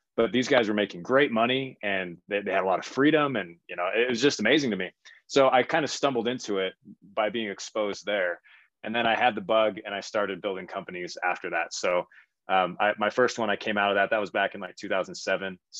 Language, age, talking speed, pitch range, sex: English, 20-39, 245 wpm, 95-115 Hz, male